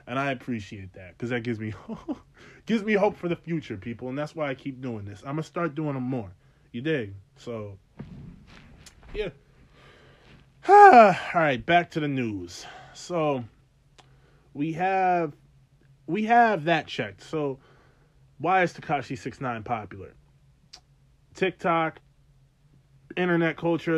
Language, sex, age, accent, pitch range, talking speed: English, male, 20-39, American, 135-190 Hz, 140 wpm